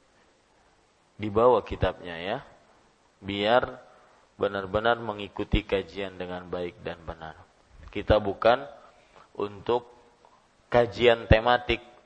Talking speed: 85 wpm